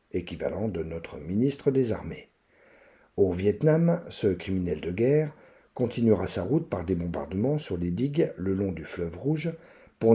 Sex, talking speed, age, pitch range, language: male, 160 wpm, 50-69, 95-135 Hz, French